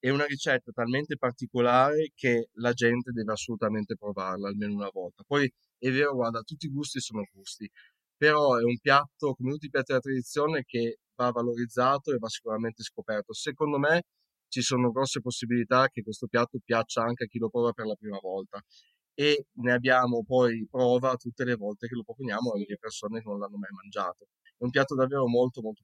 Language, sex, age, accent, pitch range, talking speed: Italian, male, 30-49, native, 115-135 Hz, 195 wpm